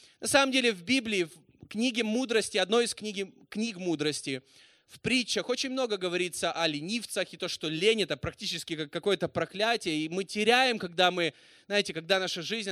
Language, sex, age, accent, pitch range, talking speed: Russian, male, 20-39, native, 165-225 Hz, 175 wpm